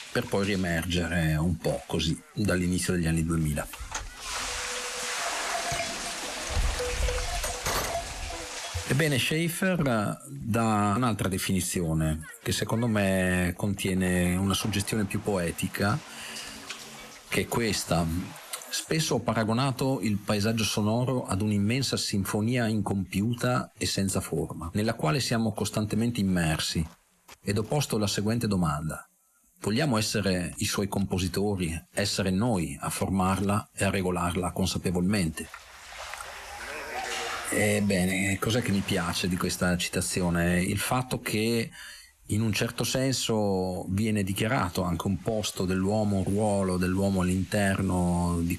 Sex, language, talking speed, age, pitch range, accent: male, Italian, 110 wpm, 50-69, 90-110 Hz, native